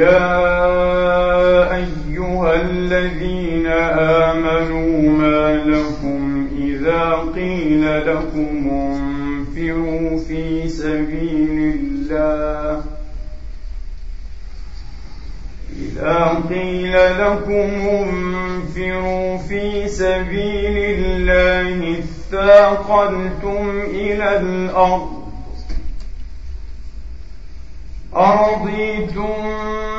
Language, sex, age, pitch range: Arabic, male, 40-59, 150-200 Hz